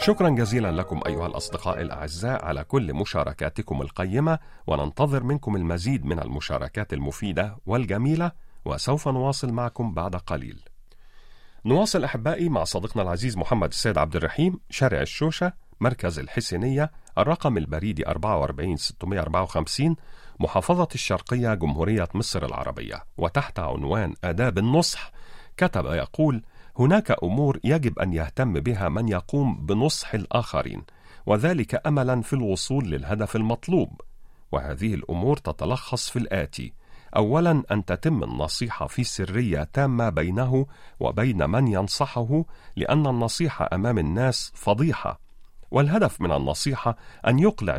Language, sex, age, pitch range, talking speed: Arabic, male, 40-59, 90-135 Hz, 115 wpm